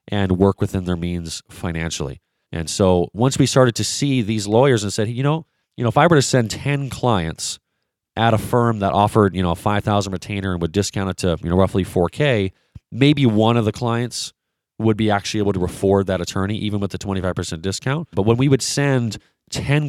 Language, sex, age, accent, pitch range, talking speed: English, male, 30-49, American, 95-120 Hz, 215 wpm